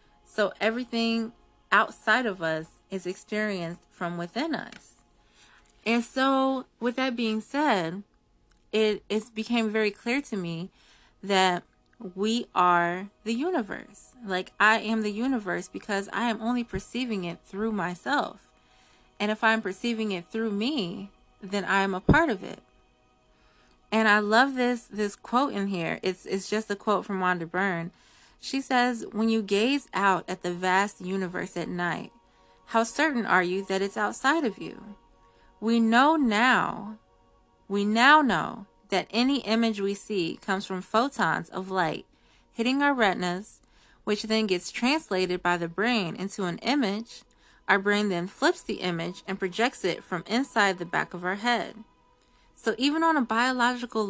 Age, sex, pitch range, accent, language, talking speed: 30-49, female, 185-235 Hz, American, English, 155 wpm